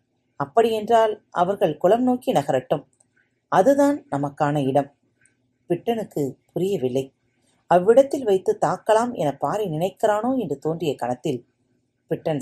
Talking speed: 95 wpm